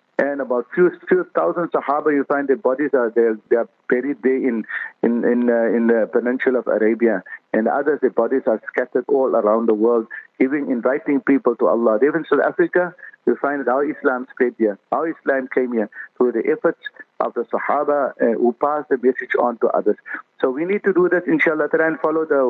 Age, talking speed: 50-69, 210 wpm